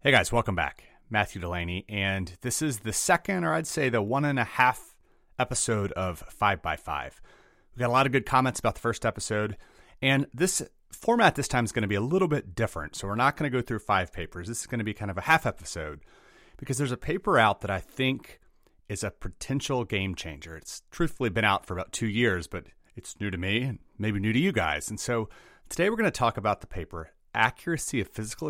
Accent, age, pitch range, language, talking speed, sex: American, 30-49, 90-125 Hz, English, 230 wpm, male